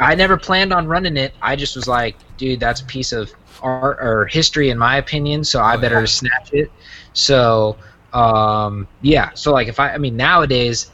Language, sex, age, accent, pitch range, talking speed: English, male, 20-39, American, 115-150 Hz, 195 wpm